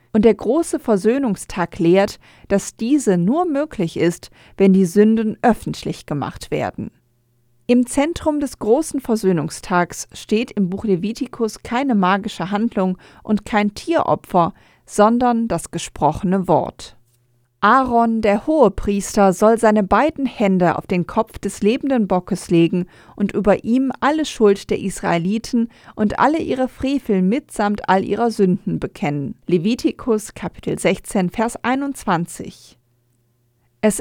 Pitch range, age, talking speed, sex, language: 180-230 Hz, 40-59, 125 wpm, female, German